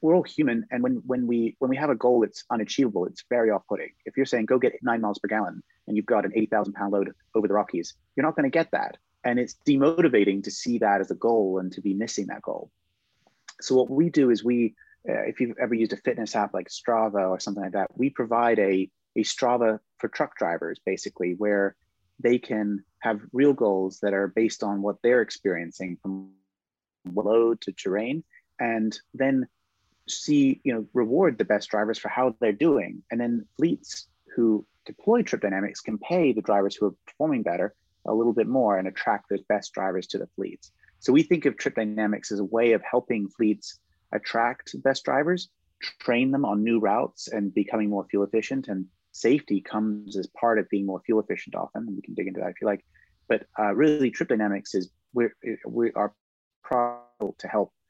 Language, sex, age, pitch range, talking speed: English, male, 30-49, 100-125 Hz, 205 wpm